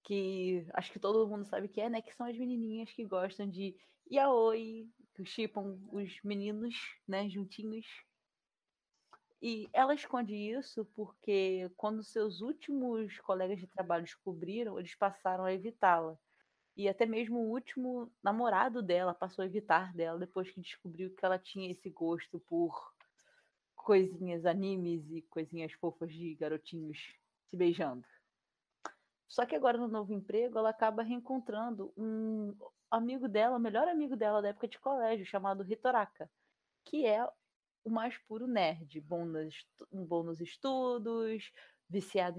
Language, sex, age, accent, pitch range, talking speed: Portuguese, female, 20-39, Brazilian, 185-230 Hz, 140 wpm